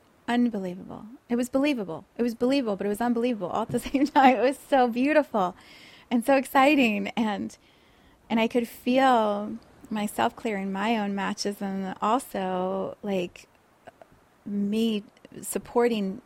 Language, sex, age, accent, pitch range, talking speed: English, female, 30-49, American, 195-245 Hz, 140 wpm